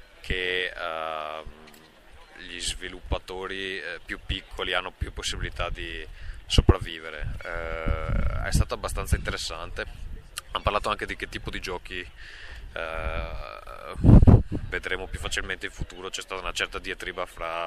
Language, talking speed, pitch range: Italian, 110 wpm, 85-95 Hz